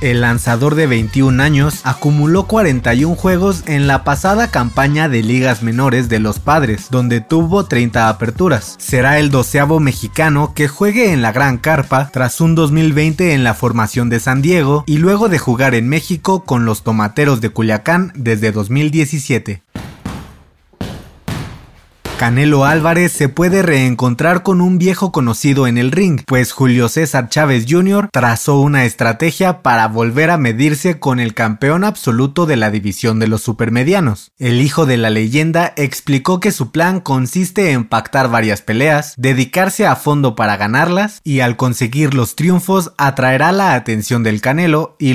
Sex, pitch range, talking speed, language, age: male, 120-160 Hz, 155 wpm, Spanish, 30-49